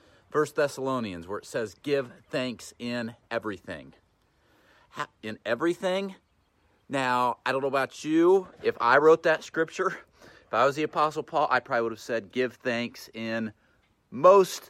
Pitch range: 105-140 Hz